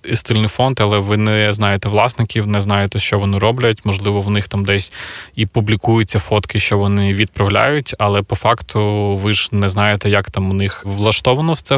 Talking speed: 190 wpm